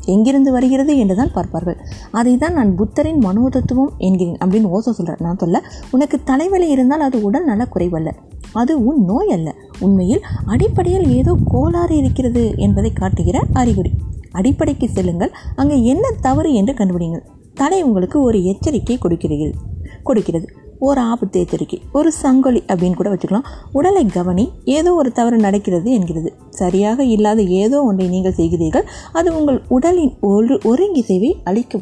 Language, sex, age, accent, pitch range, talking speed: Tamil, female, 20-39, native, 185-270 Hz, 135 wpm